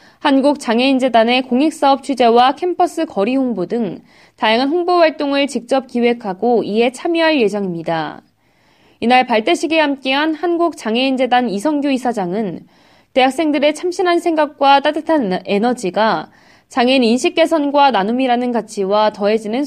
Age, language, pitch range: 20-39, Korean, 220-300 Hz